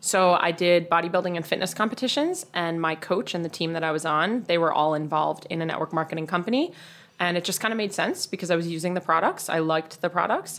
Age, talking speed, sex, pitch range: 20-39, 245 wpm, female, 160-180 Hz